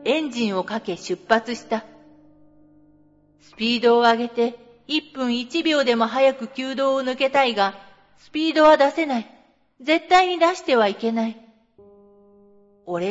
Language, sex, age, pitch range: Japanese, female, 40-59, 195-280 Hz